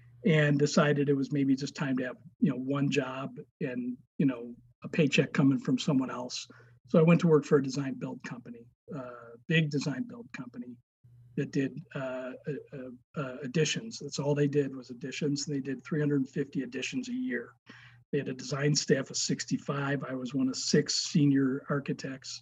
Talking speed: 175 wpm